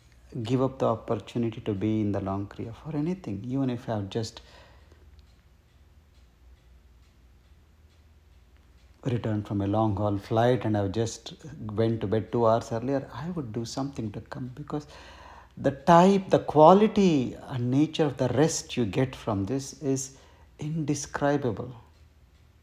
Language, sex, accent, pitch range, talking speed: English, male, Indian, 95-150 Hz, 145 wpm